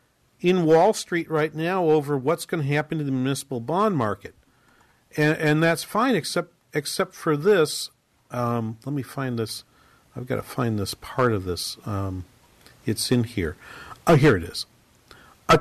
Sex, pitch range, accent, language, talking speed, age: male, 135-195 Hz, American, English, 175 wpm, 50-69